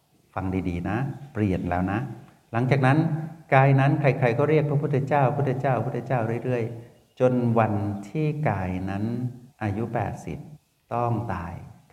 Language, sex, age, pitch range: Thai, male, 60-79, 95-120 Hz